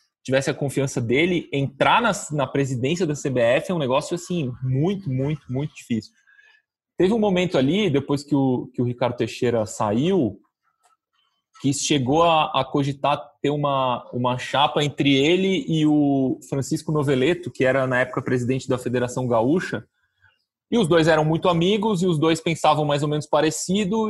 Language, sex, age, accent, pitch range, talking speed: Portuguese, male, 20-39, Brazilian, 135-185 Hz, 165 wpm